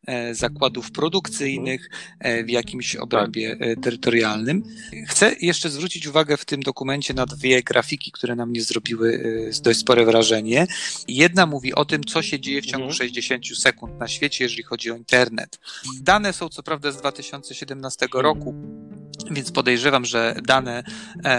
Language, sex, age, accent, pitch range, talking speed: Polish, male, 40-59, native, 125-165 Hz, 145 wpm